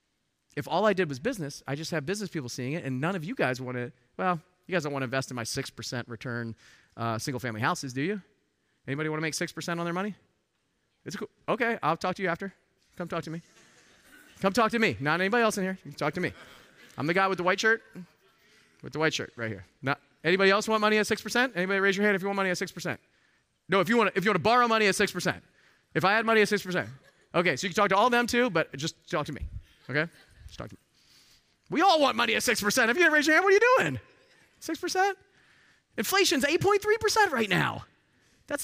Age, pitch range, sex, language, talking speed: 30-49, 145-220 Hz, male, English, 230 wpm